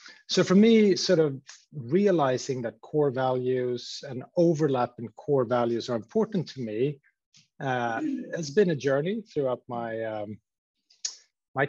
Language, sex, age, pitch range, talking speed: English, male, 30-49, 125-160 Hz, 140 wpm